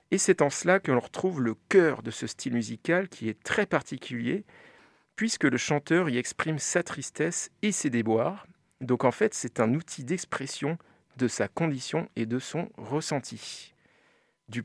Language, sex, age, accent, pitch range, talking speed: French, male, 40-59, French, 120-165 Hz, 170 wpm